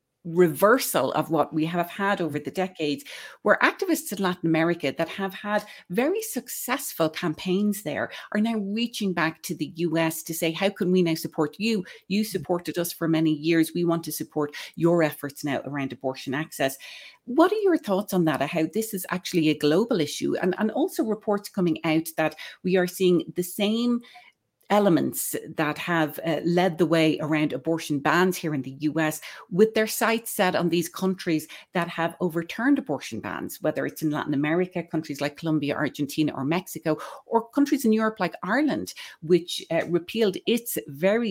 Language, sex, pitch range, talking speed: English, female, 155-205 Hz, 180 wpm